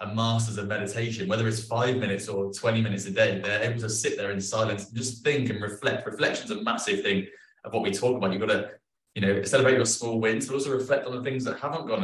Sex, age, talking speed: male, 20-39, 265 wpm